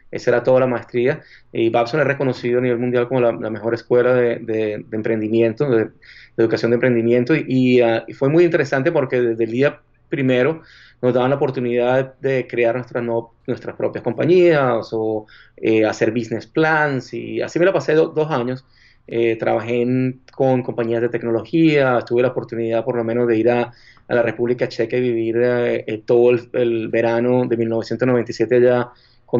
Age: 20-39